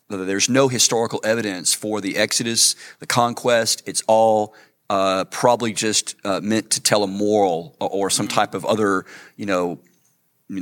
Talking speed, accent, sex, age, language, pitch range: 160 wpm, American, male, 40-59, English, 100-120 Hz